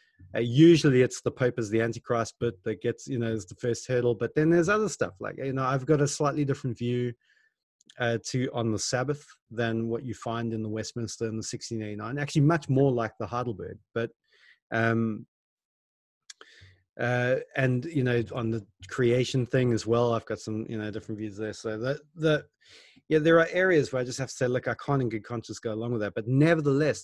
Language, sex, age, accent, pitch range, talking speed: English, male, 30-49, Australian, 115-135 Hz, 215 wpm